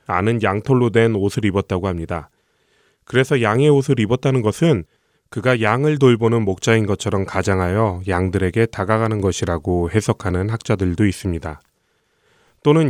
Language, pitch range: Korean, 95-130 Hz